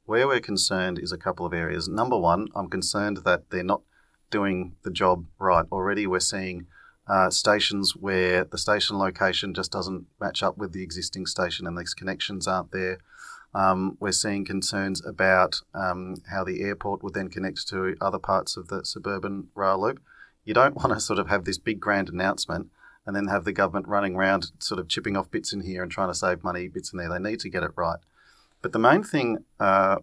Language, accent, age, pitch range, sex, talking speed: English, Australian, 40-59, 90-100 Hz, male, 210 wpm